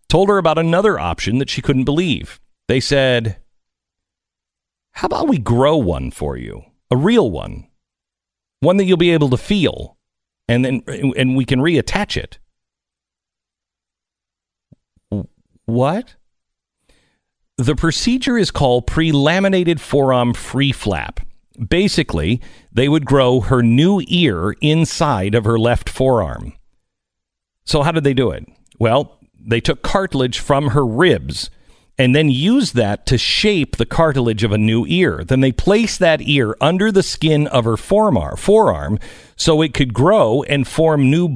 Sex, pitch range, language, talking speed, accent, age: male, 120-165 Hz, English, 145 wpm, American, 50-69